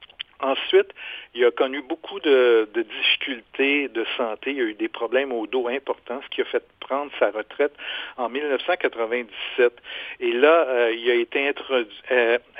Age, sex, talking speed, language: 50-69, male, 160 wpm, French